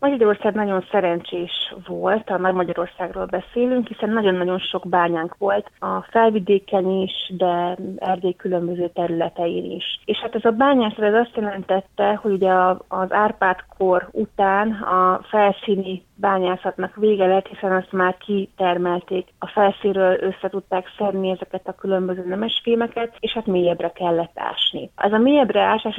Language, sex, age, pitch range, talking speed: Hungarian, female, 30-49, 180-205 Hz, 135 wpm